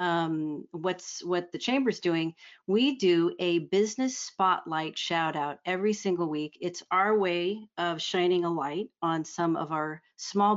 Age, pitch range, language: 40-59, 165-195 Hz, English